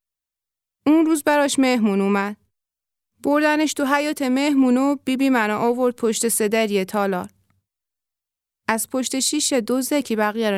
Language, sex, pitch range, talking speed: Persian, female, 200-275 Hz, 130 wpm